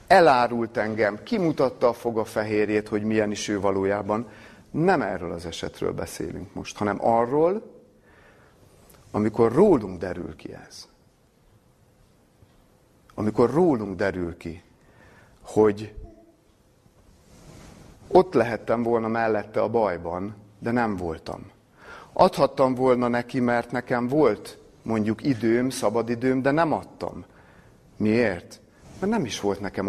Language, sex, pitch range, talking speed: Hungarian, male, 100-135 Hz, 115 wpm